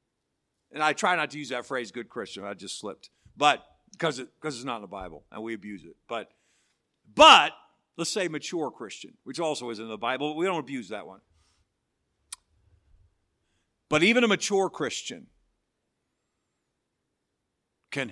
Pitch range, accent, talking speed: 120-155 Hz, American, 165 wpm